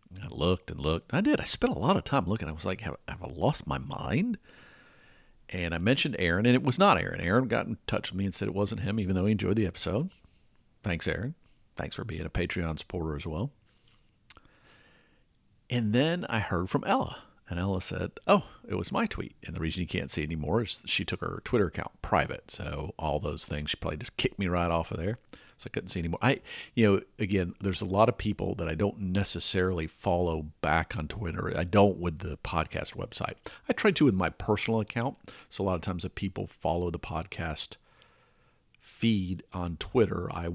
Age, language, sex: 50-69, English, male